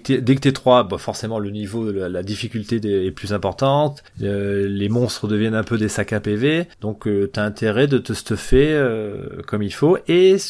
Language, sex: French, male